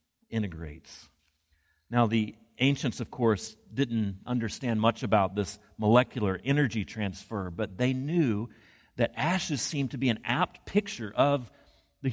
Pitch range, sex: 105-145 Hz, male